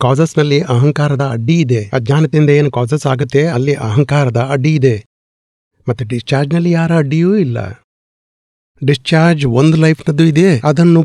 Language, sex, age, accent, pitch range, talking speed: Gujarati, male, 60-79, native, 125-160 Hz, 80 wpm